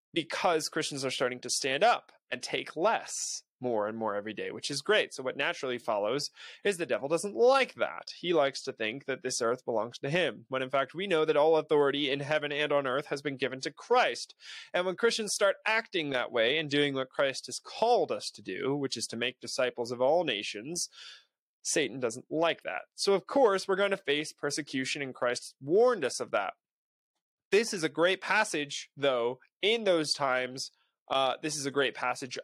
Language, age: English, 20-39